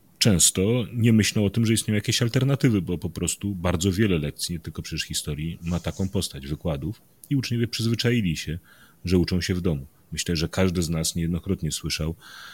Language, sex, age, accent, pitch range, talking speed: Polish, male, 30-49, native, 80-105 Hz, 185 wpm